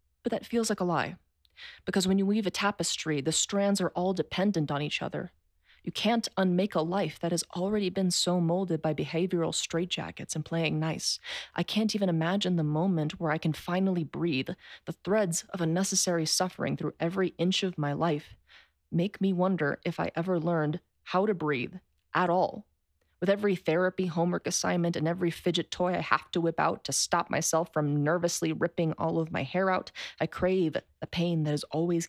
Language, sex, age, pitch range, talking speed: English, female, 20-39, 155-185 Hz, 195 wpm